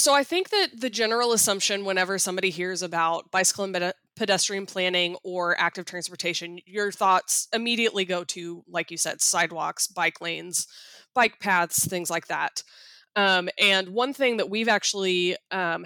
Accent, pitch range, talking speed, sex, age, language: American, 180-210 Hz, 160 wpm, female, 20-39, English